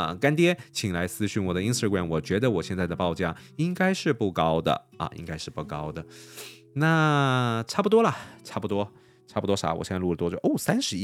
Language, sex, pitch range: Chinese, male, 90-135 Hz